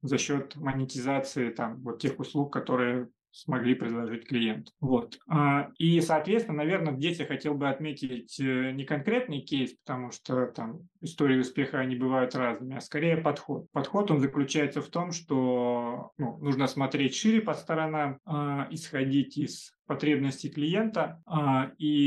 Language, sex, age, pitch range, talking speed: Russian, male, 30-49, 130-150 Hz, 140 wpm